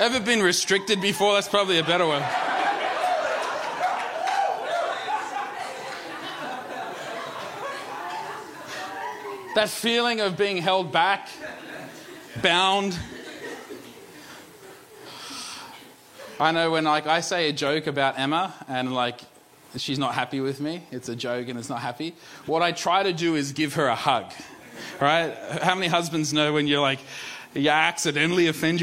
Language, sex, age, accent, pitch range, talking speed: English, male, 20-39, Australian, 155-200 Hz, 125 wpm